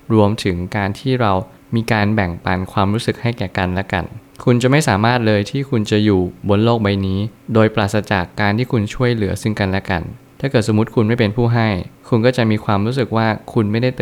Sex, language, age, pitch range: male, Thai, 20-39, 100-120 Hz